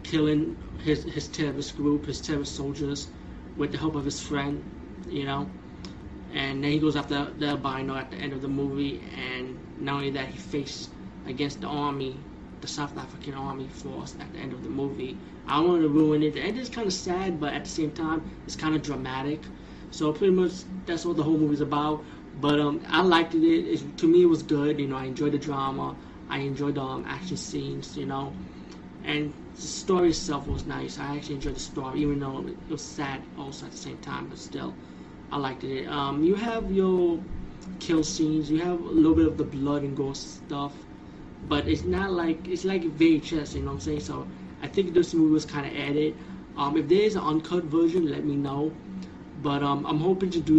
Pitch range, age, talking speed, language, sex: 140-160 Hz, 20-39, 220 wpm, English, male